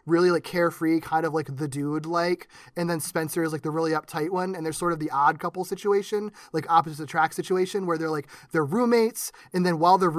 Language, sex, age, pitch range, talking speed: English, male, 20-39, 155-175 Hz, 230 wpm